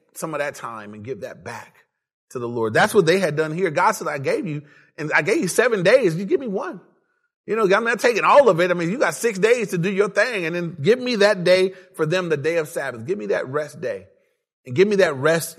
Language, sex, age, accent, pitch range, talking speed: English, male, 30-49, American, 150-195 Hz, 275 wpm